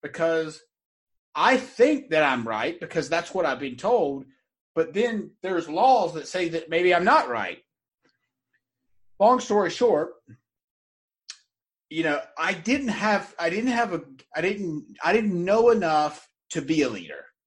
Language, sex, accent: English, male, American